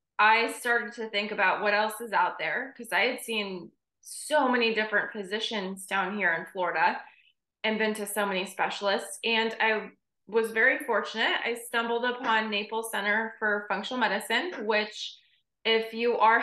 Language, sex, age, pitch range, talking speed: English, female, 20-39, 205-245 Hz, 165 wpm